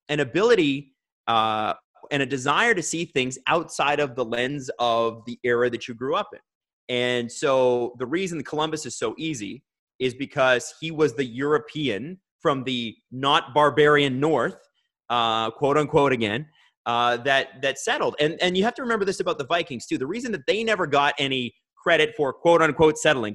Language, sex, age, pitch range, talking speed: English, male, 30-49, 125-170 Hz, 180 wpm